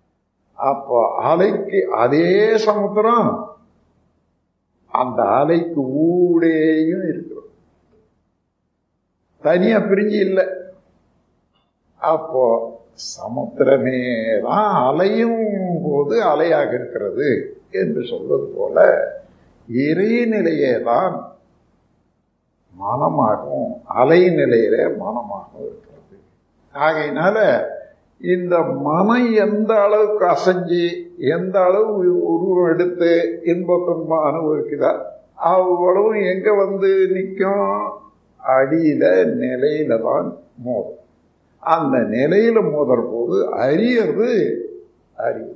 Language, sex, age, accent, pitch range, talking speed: Tamil, male, 60-79, native, 155-215 Hz, 70 wpm